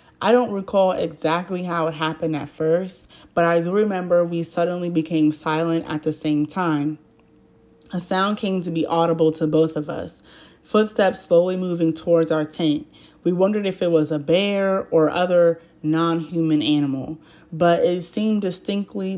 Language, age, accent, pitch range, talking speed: English, 20-39, American, 160-185 Hz, 165 wpm